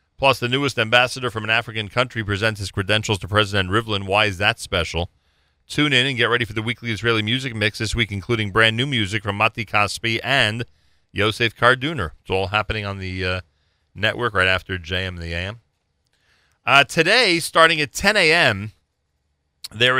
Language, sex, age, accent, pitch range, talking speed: English, male, 40-59, American, 85-115 Hz, 180 wpm